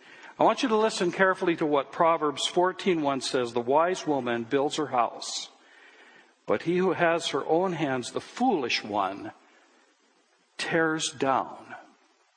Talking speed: 140 wpm